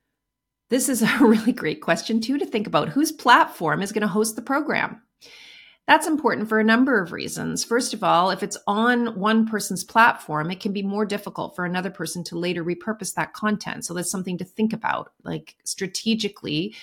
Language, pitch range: English, 170-215 Hz